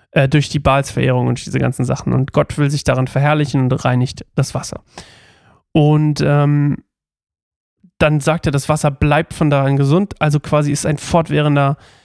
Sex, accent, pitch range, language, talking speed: male, German, 140-165 Hz, German, 165 wpm